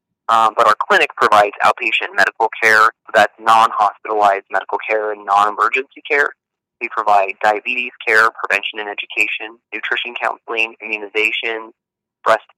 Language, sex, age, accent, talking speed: English, male, 30-49, American, 130 wpm